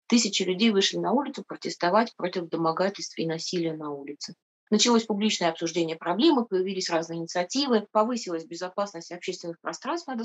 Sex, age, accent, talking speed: female, 20-39, native, 140 wpm